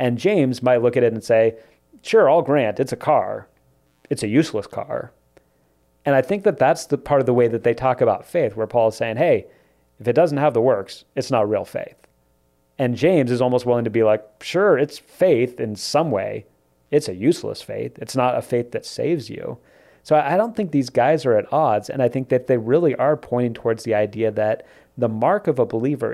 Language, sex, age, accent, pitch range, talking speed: English, male, 30-49, American, 105-125 Hz, 225 wpm